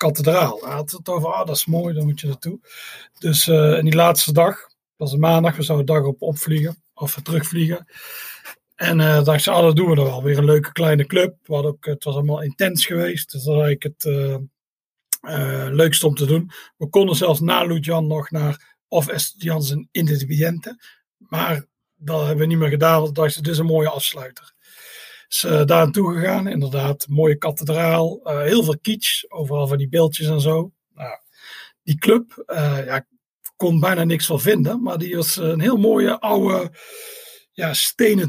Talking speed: 200 wpm